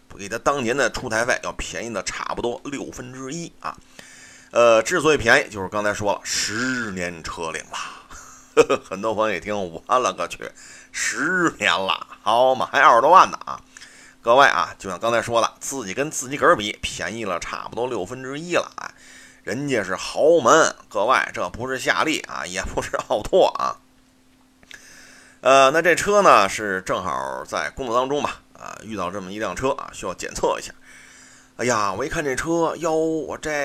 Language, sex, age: Chinese, male, 30-49